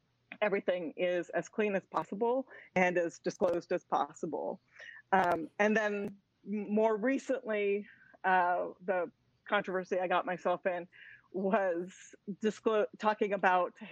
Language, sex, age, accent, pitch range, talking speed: English, female, 40-59, American, 180-210 Hz, 110 wpm